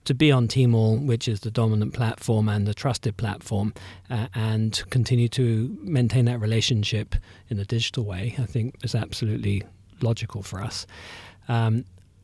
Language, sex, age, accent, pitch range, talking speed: English, male, 40-59, British, 105-125 Hz, 155 wpm